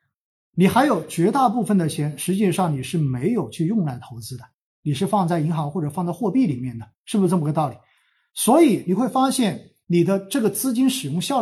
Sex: male